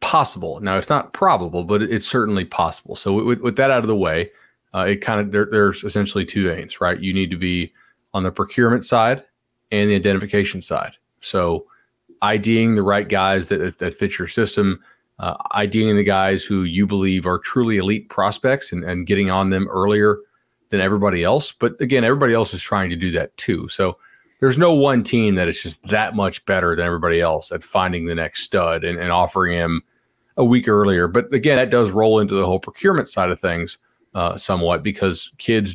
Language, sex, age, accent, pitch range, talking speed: English, male, 30-49, American, 95-120 Hz, 205 wpm